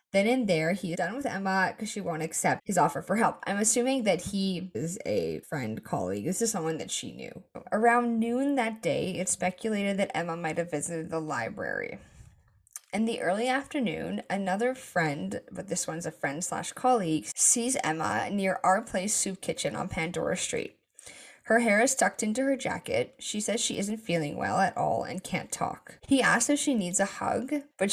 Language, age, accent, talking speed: English, 10-29, American, 195 wpm